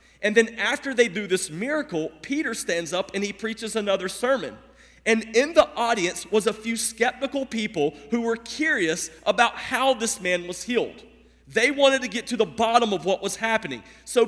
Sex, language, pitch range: male, English, 165-245 Hz